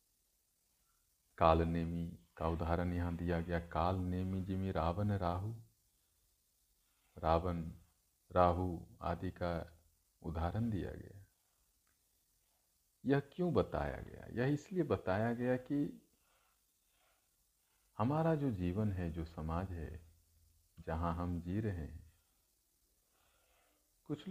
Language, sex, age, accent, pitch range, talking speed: Hindi, male, 50-69, native, 85-110 Hz, 100 wpm